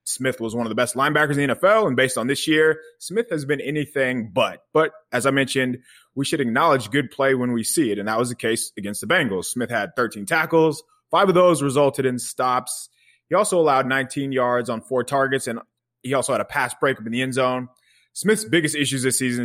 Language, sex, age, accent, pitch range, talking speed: English, male, 20-39, American, 115-140 Hz, 230 wpm